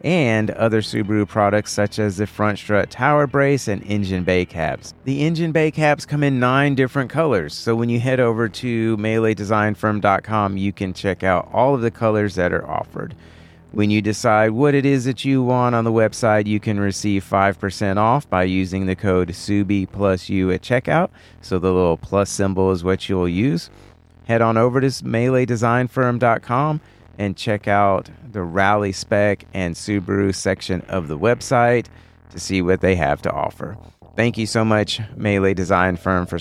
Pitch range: 95-120 Hz